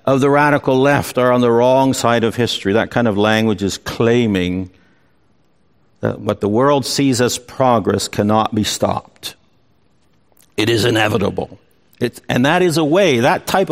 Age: 60-79